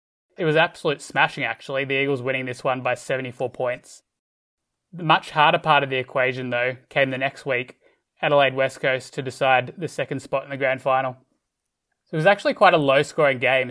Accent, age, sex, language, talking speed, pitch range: Australian, 20-39, male, English, 200 wpm, 130-145 Hz